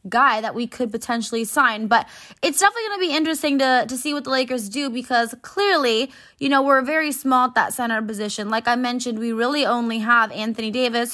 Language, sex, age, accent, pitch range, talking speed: English, female, 20-39, American, 220-270 Hz, 215 wpm